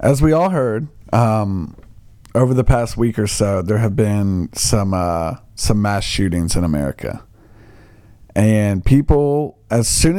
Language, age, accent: English, 40-59, American